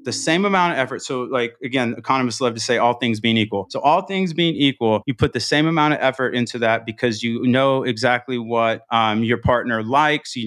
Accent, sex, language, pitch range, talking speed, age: American, male, English, 120-150 Hz, 230 wpm, 30-49